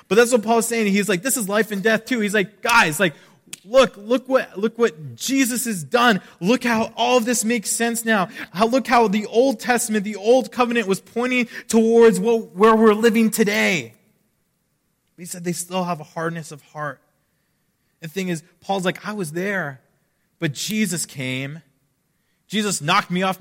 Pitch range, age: 135-205 Hz, 20-39